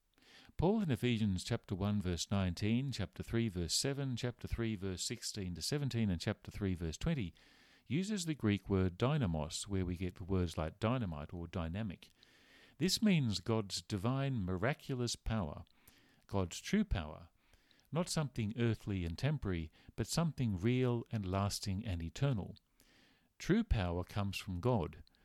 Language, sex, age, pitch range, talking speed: English, male, 50-69, 95-130 Hz, 145 wpm